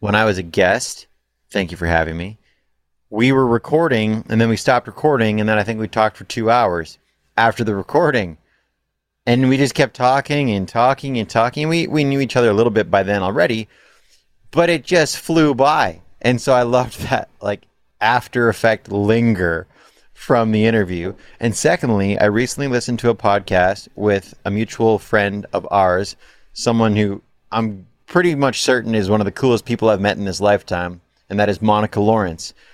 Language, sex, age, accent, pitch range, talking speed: English, male, 30-49, American, 100-135 Hz, 190 wpm